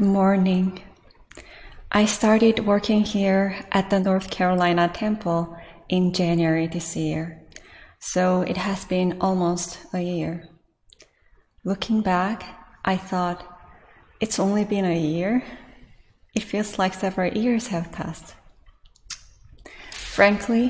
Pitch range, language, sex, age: 170-195 Hz, English, female, 20-39